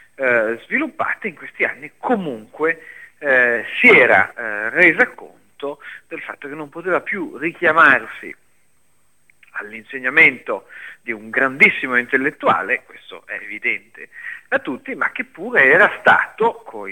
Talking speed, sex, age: 125 wpm, male, 40-59